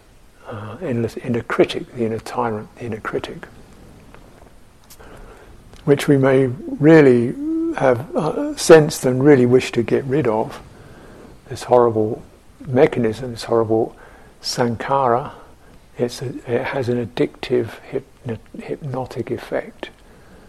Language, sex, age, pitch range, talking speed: English, male, 60-79, 120-135 Hz, 110 wpm